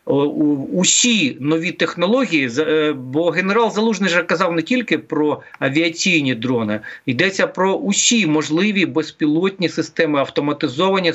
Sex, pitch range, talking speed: male, 140-175 Hz, 110 wpm